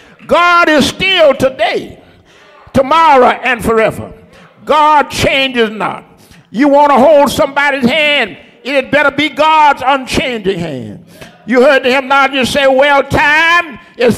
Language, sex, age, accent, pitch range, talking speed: English, male, 60-79, American, 270-340 Hz, 130 wpm